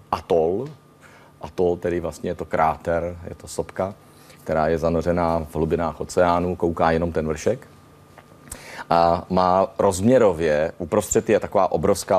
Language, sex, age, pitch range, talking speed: Czech, male, 40-59, 80-95 Hz, 130 wpm